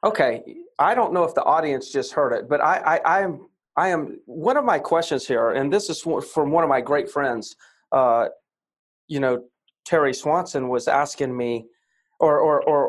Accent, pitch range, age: American, 145-215 Hz, 40-59